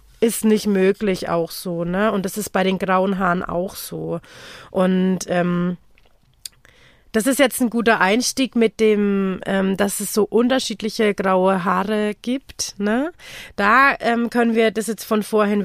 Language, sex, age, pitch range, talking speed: German, female, 30-49, 190-230 Hz, 160 wpm